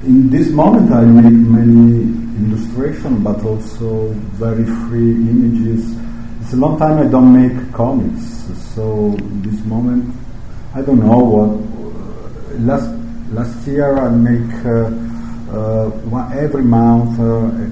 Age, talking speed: 50-69, 130 wpm